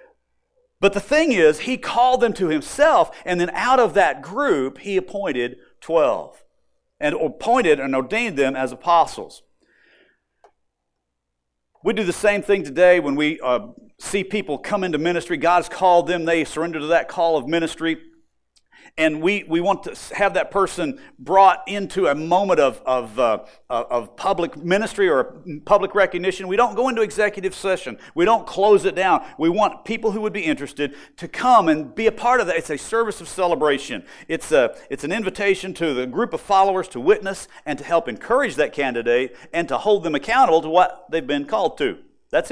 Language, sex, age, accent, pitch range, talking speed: English, male, 50-69, American, 150-215 Hz, 185 wpm